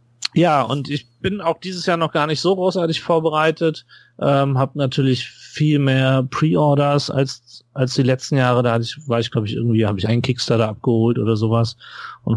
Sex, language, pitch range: male, German, 110-130 Hz